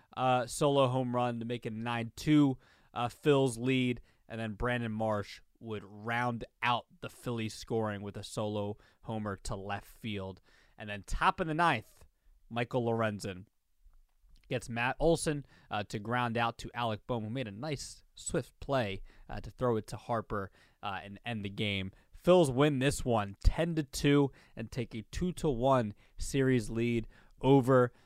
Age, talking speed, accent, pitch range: 20-39, 155 wpm, American, 105-125 Hz